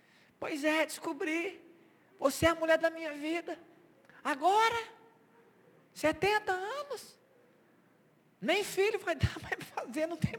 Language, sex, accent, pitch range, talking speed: Portuguese, male, Brazilian, 205-310 Hz, 125 wpm